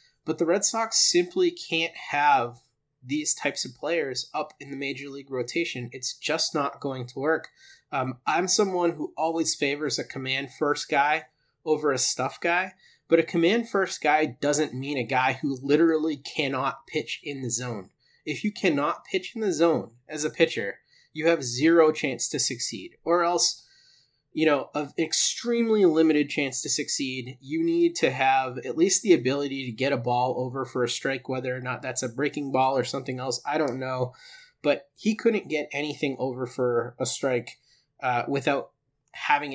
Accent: American